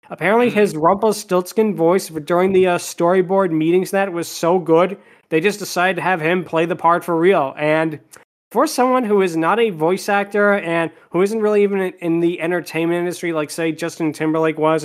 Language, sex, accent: English, male, American